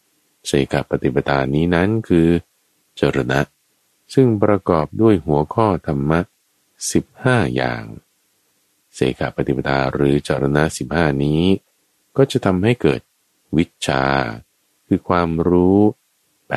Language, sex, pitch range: Thai, male, 70-90 Hz